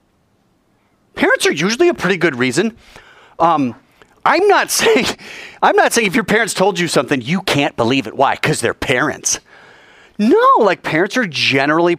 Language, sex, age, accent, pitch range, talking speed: English, male, 30-49, American, 120-185 Hz, 165 wpm